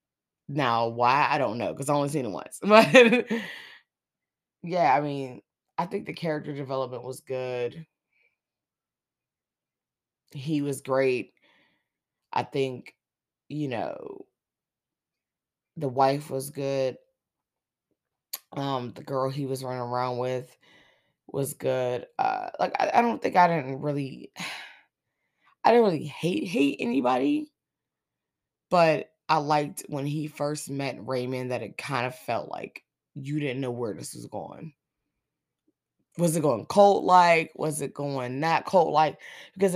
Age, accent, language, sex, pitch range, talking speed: 20-39, American, English, female, 135-180 Hz, 135 wpm